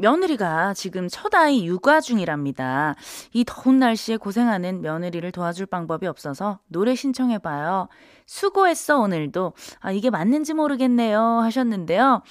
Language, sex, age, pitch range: Korean, female, 20-39, 185-295 Hz